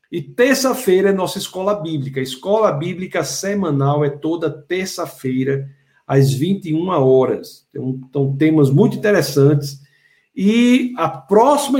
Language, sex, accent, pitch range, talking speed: Portuguese, male, Brazilian, 145-195 Hz, 110 wpm